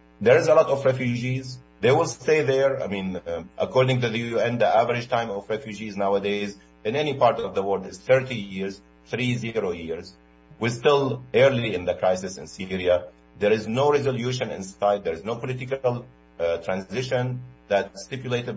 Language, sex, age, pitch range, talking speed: Arabic, male, 50-69, 100-140 Hz, 180 wpm